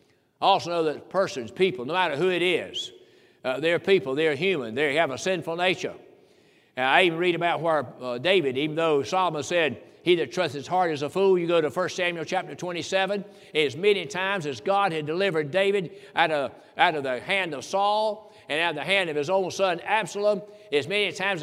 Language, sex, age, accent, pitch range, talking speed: English, male, 60-79, American, 155-195 Hz, 215 wpm